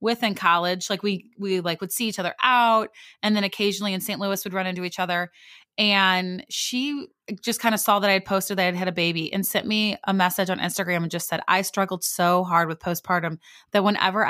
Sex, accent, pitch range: female, American, 175-210 Hz